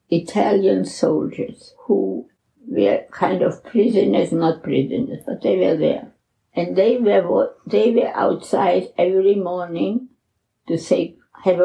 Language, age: English, 60-79